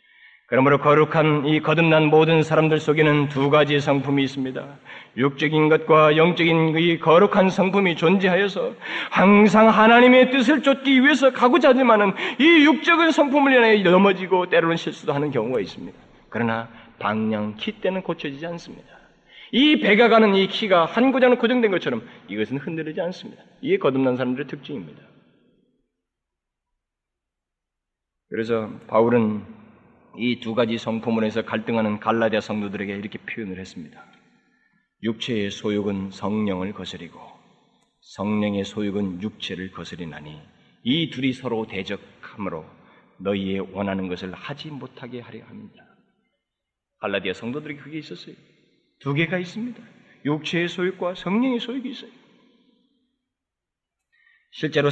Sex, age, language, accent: male, 40-59, Korean, native